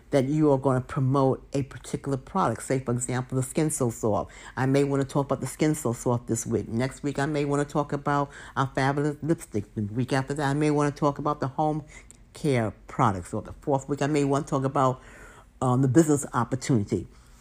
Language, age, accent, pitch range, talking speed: English, 50-69, American, 120-155 Hz, 230 wpm